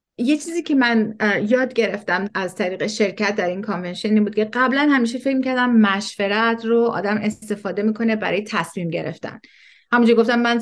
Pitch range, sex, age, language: 195-235 Hz, female, 30-49, Persian